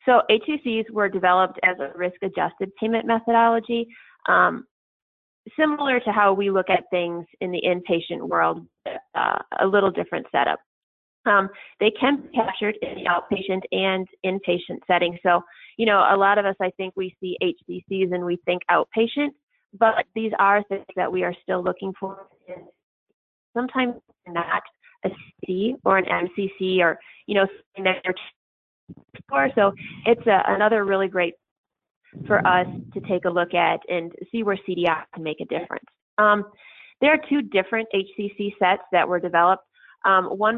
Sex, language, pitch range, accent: female, English, 180-210 Hz, American